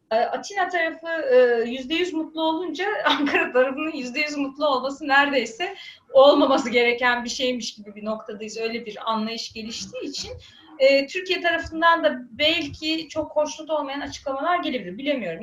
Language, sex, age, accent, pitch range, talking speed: Turkish, female, 30-49, native, 250-320 Hz, 130 wpm